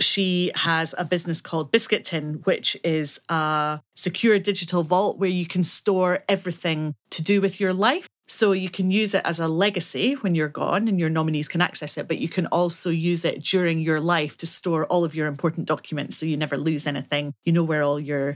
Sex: female